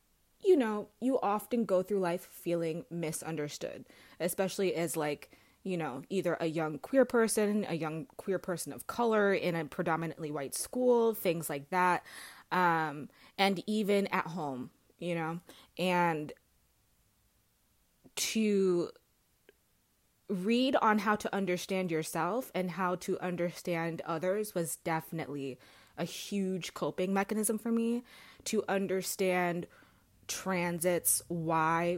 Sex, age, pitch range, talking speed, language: female, 20-39, 165-200 Hz, 120 wpm, English